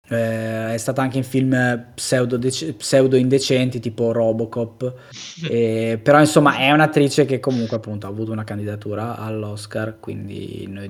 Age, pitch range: 20-39, 110-140 Hz